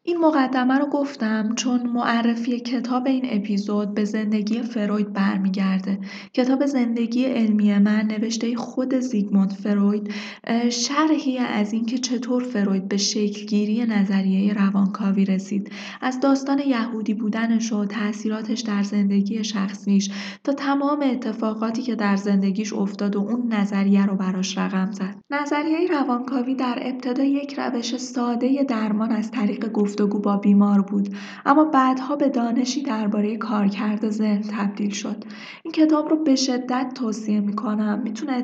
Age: 10-29